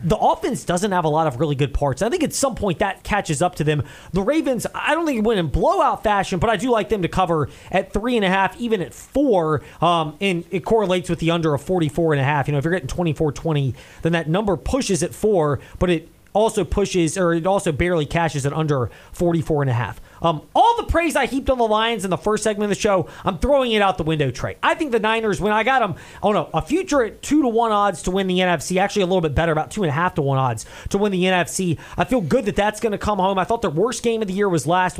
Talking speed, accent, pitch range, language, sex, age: 280 wpm, American, 165-225 Hz, English, male, 30-49